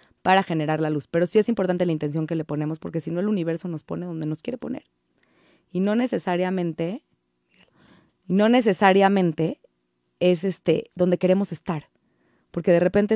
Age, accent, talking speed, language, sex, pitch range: 20-39, Mexican, 170 wpm, Spanish, female, 150-180 Hz